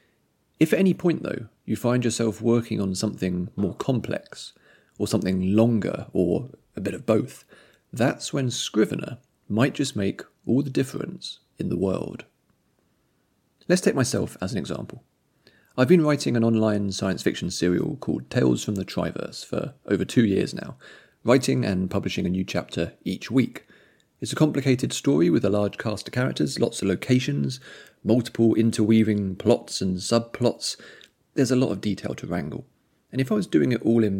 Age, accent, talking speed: 30-49, British, 170 wpm